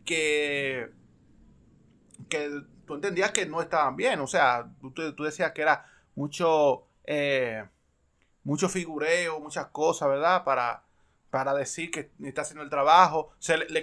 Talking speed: 145 wpm